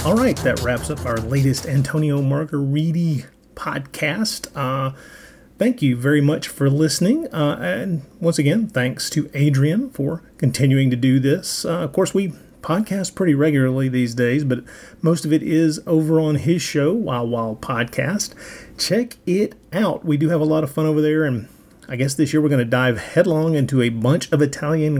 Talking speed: 185 wpm